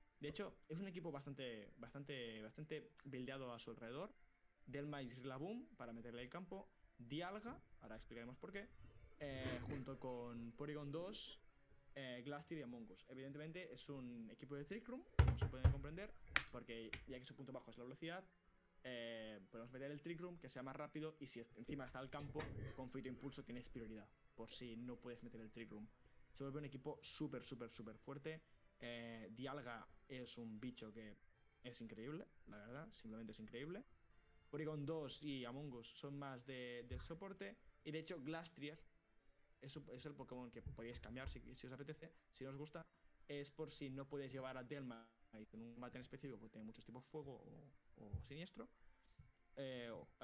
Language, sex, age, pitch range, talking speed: Spanish, male, 20-39, 115-145 Hz, 185 wpm